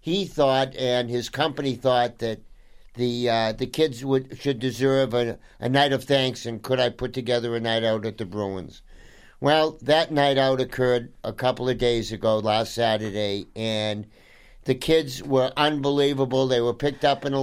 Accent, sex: American, male